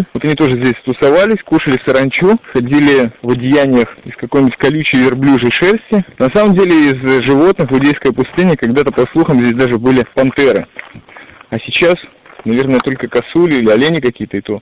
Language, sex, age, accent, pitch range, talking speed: Russian, male, 20-39, native, 125-160 Hz, 160 wpm